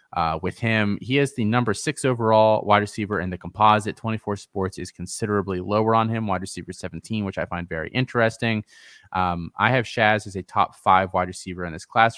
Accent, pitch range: American, 90-110 Hz